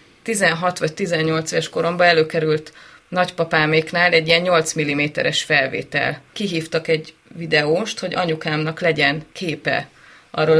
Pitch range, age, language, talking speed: 155-180 Hz, 30-49, Hungarian, 115 wpm